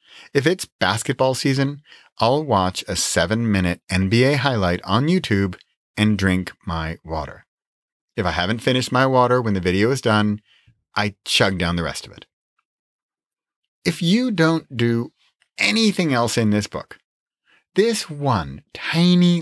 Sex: male